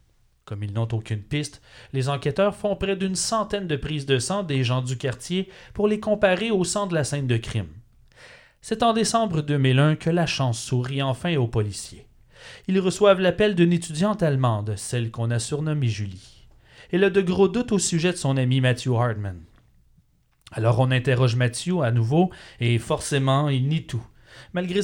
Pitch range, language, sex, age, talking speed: 120-175 Hz, French, male, 30-49, 180 wpm